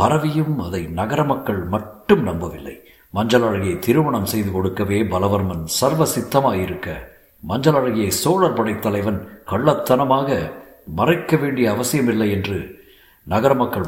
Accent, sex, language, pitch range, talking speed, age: native, male, Tamil, 100-150 Hz, 115 wpm, 50-69